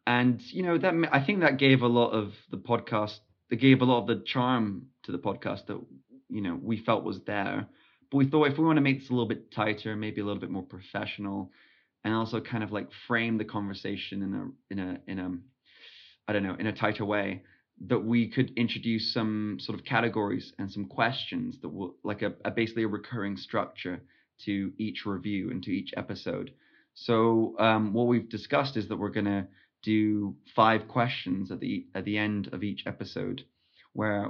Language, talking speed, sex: English, 205 wpm, male